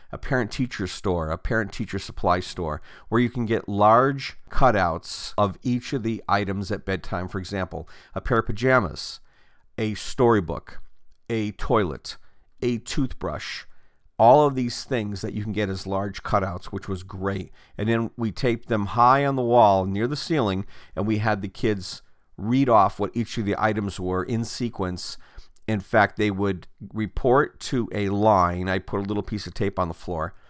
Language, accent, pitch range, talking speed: English, American, 95-120 Hz, 180 wpm